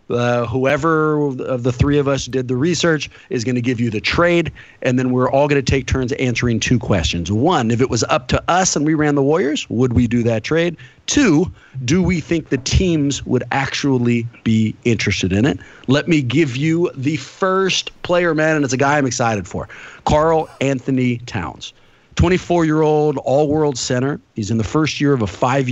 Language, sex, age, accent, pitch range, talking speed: English, male, 40-59, American, 115-150 Hz, 210 wpm